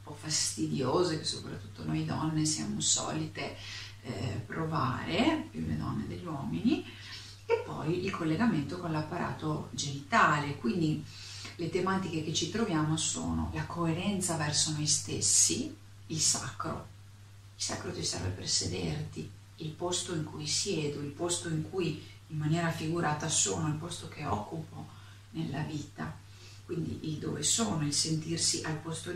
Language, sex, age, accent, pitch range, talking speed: Italian, female, 40-59, native, 100-160 Hz, 140 wpm